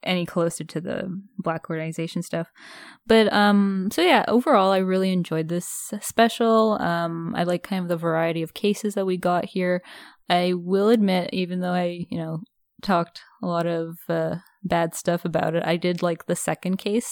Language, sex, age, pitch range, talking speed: English, female, 10-29, 165-195 Hz, 185 wpm